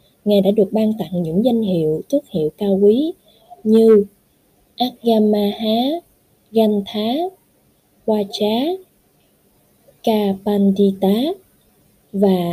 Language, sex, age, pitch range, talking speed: Vietnamese, female, 20-39, 185-225 Hz, 85 wpm